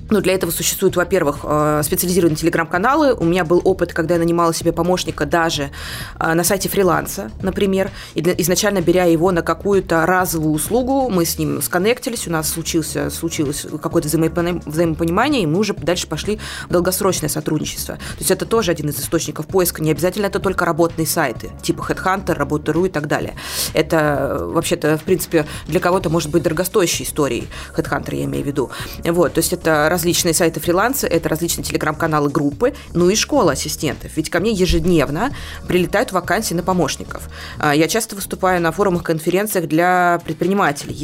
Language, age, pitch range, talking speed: Russian, 20-39, 155-185 Hz, 160 wpm